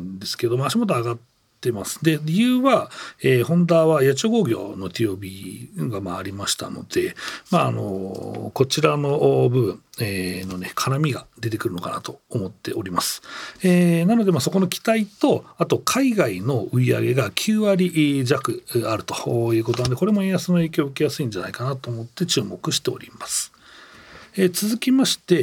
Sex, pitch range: male, 115-170 Hz